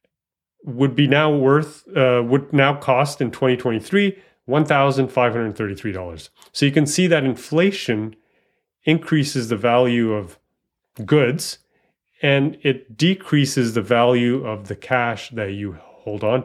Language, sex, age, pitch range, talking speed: English, male, 30-49, 110-140 Hz, 125 wpm